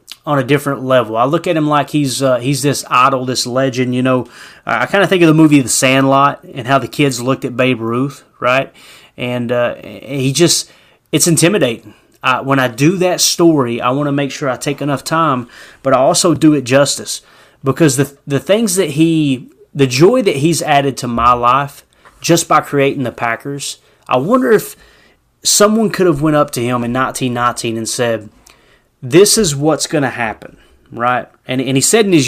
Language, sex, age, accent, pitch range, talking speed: English, male, 30-49, American, 125-155 Hz, 205 wpm